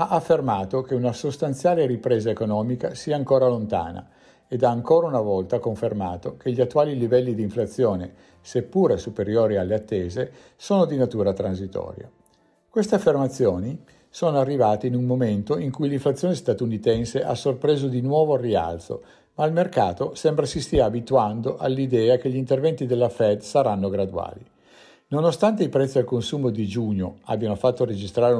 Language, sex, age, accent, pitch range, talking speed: Italian, male, 50-69, native, 105-135 Hz, 150 wpm